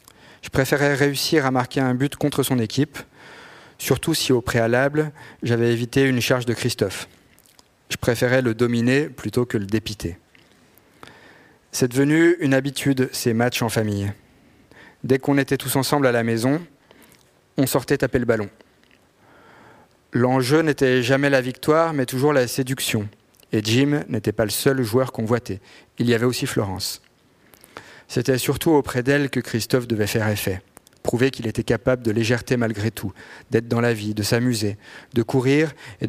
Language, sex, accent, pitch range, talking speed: French, male, French, 115-135 Hz, 160 wpm